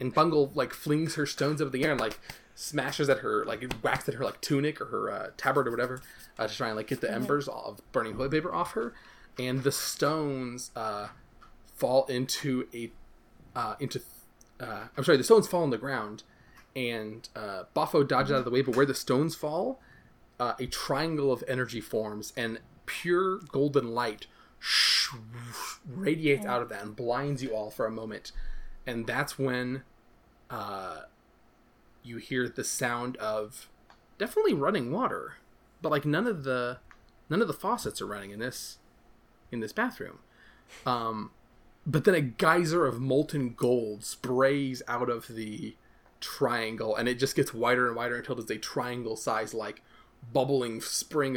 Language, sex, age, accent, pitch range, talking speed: English, male, 20-39, American, 115-140 Hz, 175 wpm